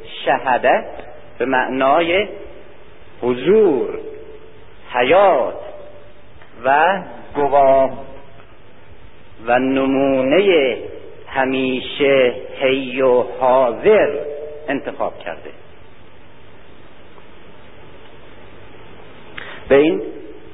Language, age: Persian, 50-69